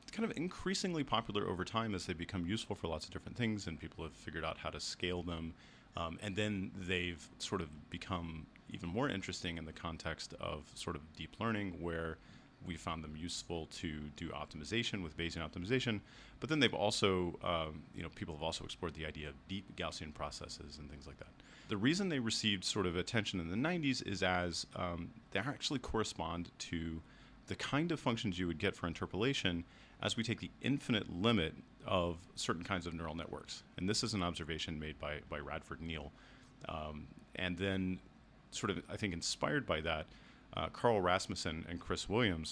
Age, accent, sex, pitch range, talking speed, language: 30-49, American, male, 80-100 Hz, 195 wpm, English